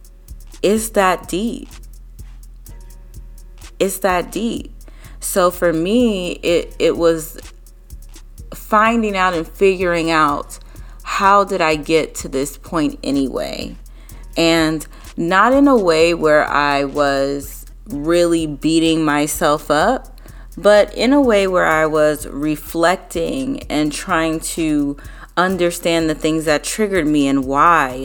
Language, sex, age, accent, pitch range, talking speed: English, female, 30-49, American, 155-210 Hz, 120 wpm